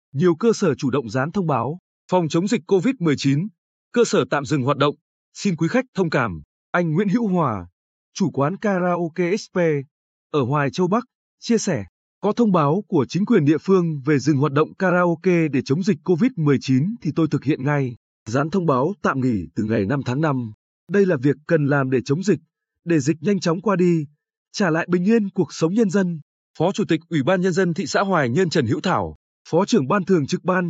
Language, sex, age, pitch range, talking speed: Vietnamese, male, 20-39, 145-190 Hz, 215 wpm